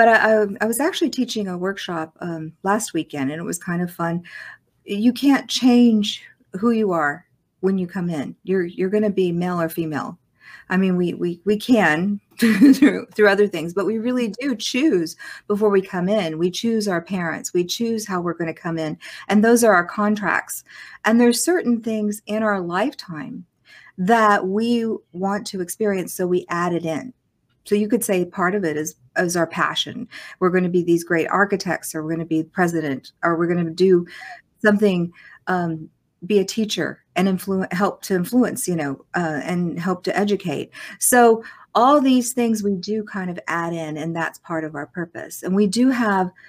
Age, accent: 50-69, American